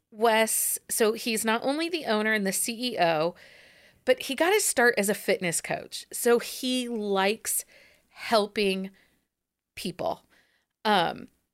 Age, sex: 40-59, female